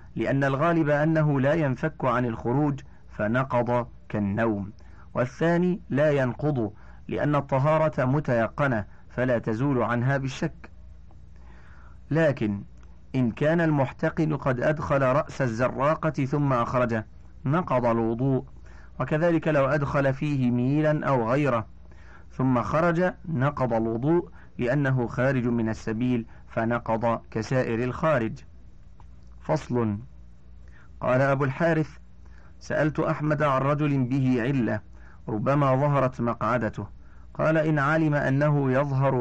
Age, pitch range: 40-59, 105-150 Hz